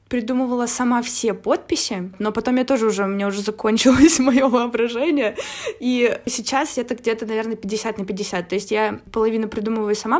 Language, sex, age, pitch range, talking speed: Russian, female, 20-39, 210-250 Hz, 170 wpm